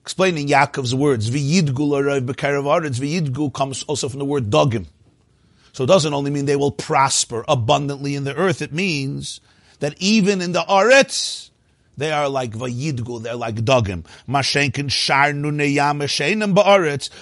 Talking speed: 155 wpm